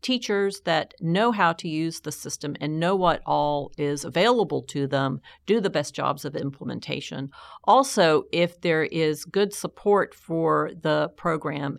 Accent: American